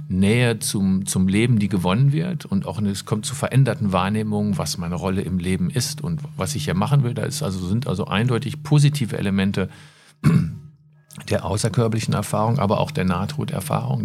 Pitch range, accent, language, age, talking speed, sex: 110-150 Hz, German, German, 50-69, 170 wpm, male